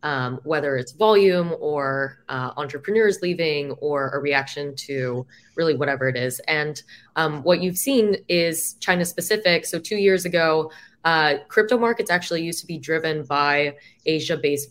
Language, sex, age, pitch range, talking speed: English, female, 20-39, 140-175 Hz, 155 wpm